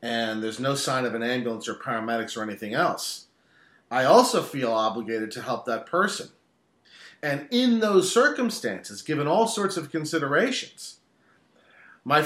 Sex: male